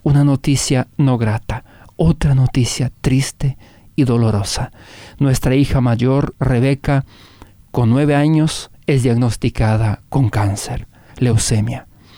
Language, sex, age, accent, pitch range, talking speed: Spanish, male, 40-59, Mexican, 110-150 Hz, 105 wpm